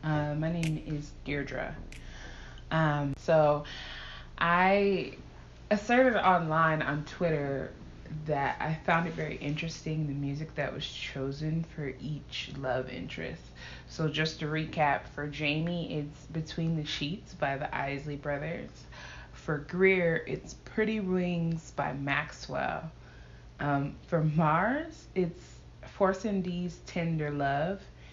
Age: 20-39